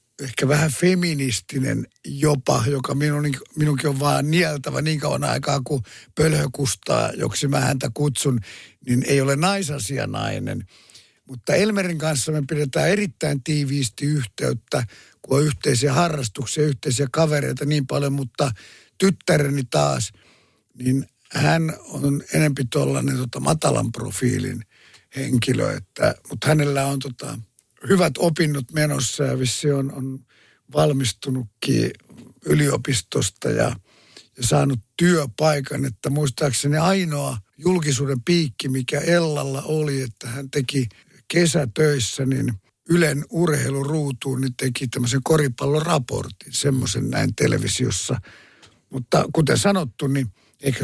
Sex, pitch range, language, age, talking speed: male, 130-150 Hz, Finnish, 60-79, 110 wpm